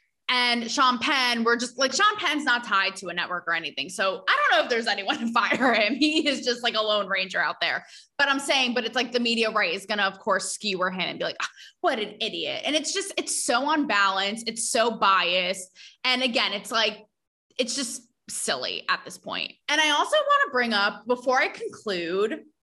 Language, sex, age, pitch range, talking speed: English, female, 20-39, 210-285 Hz, 225 wpm